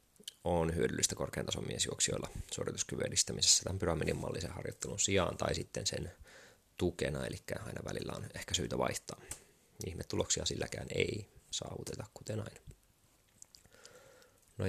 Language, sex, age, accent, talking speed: Finnish, male, 20-39, native, 125 wpm